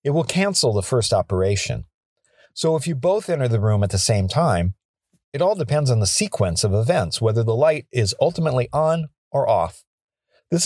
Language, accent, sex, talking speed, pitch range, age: English, American, male, 190 wpm, 100-150 Hz, 50-69